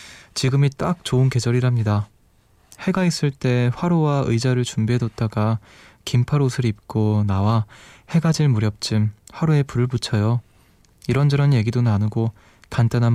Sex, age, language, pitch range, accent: male, 20-39, Korean, 110-135 Hz, native